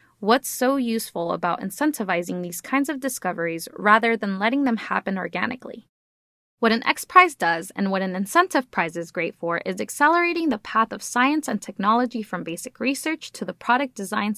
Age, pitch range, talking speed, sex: 10-29, 195-265 Hz, 175 wpm, female